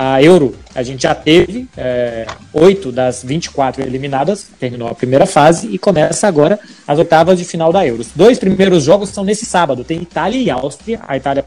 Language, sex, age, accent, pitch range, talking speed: Portuguese, male, 20-39, Brazilian, 130-170 Hz, 190 wpm